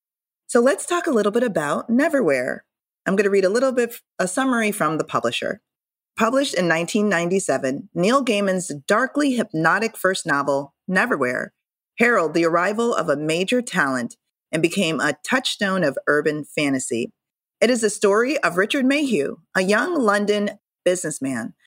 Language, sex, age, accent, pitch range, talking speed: English, female, 30-49, American, 155-225 Hz, 150 wpm